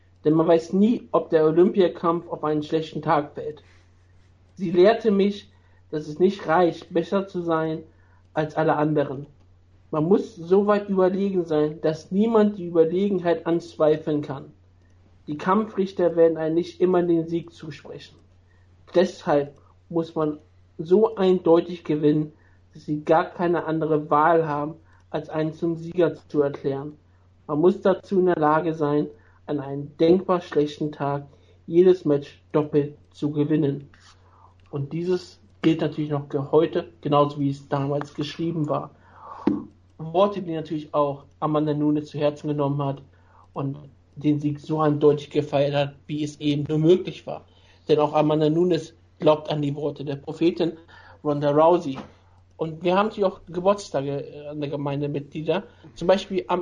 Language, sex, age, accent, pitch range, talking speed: German, male, 60-79, German, 140-170 Hz, 150 wpm